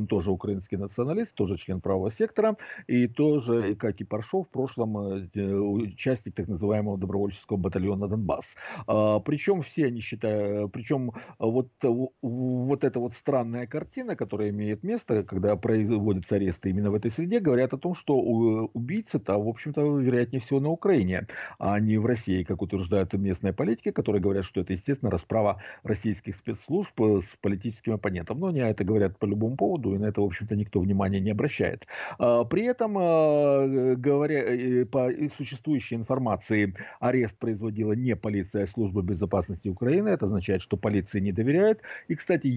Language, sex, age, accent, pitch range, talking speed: Russian, male, 50-69, native, 100-135 Hz, 155 wpm